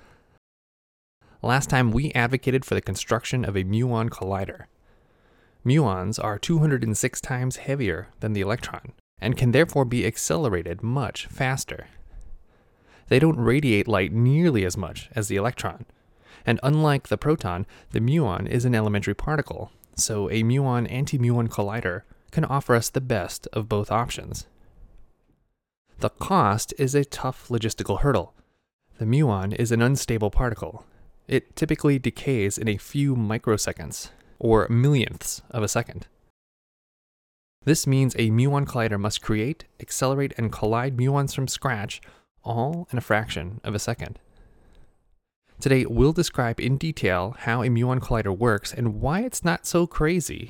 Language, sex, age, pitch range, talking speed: English, male, 20-39, 105-135 Hz, 140 wpm